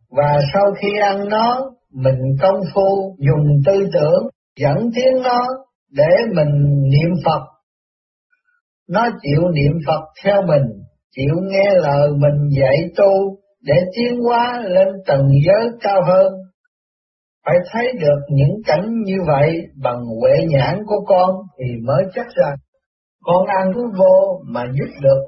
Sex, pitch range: male, 145-225 Hz